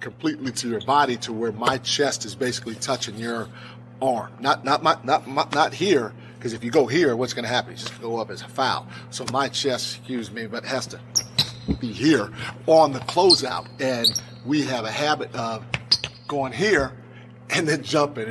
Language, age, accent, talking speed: English, 40-59, American, 195 wpm